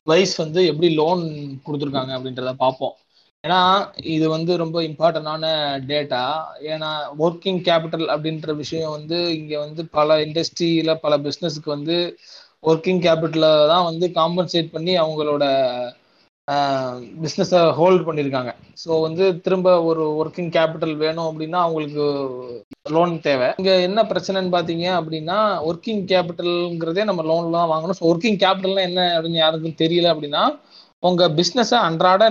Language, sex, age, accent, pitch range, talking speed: Tamil, male, 20-39, native, 150-175 Hz, 125 wpm